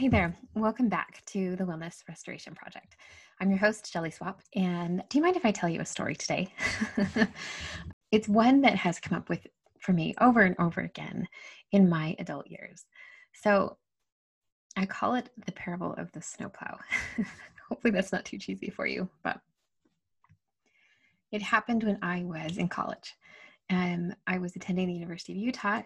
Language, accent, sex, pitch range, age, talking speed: English, American, female, 170-210 Hz, 20-39, 170 wpm